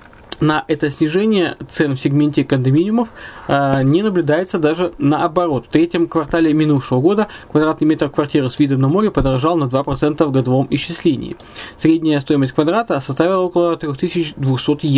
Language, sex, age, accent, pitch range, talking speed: Russian, male, 20-39, native, 135-165 Hz, 145 wpm